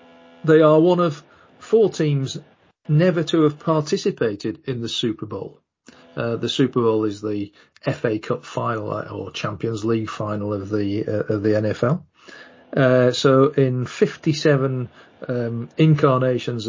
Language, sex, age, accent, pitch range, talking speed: English, male, 40-59, British, 115-150 Hz, 140 wpm